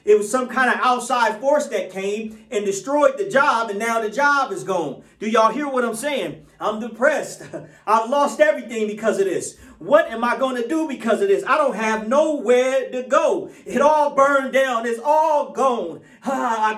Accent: American